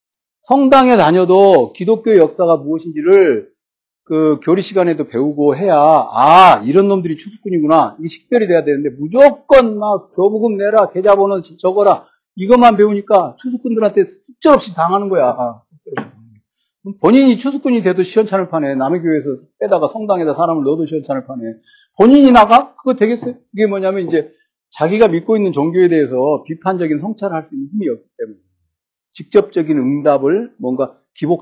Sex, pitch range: male, 155-225 Hz